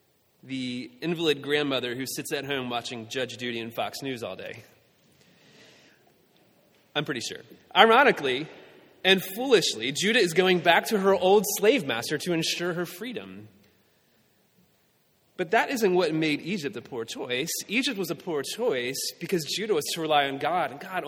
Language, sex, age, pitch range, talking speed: English, male, 30-49, 125-185 Hz, 160 wpm